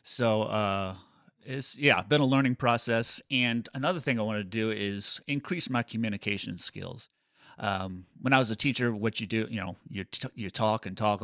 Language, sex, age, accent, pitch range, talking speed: English, male, 30-49, American, 95-115 Hz, 200 wpm